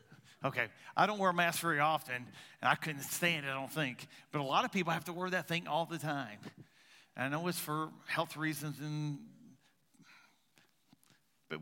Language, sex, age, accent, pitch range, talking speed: English, male, 50-69, American, 135-155 Hz, 195 wpm